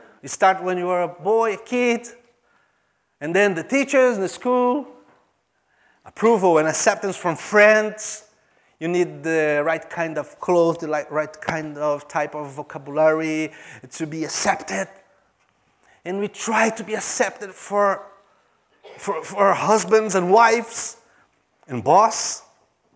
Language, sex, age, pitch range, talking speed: English, male, 30-49, 150-220 Hz, 135 wpm